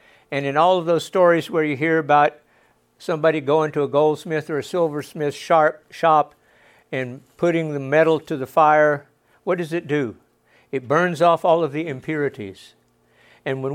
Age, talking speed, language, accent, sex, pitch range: 60-79, 170 wpm, English, American, male, 140-175 Hz